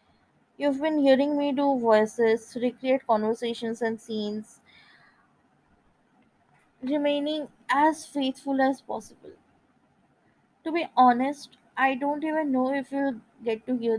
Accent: Indian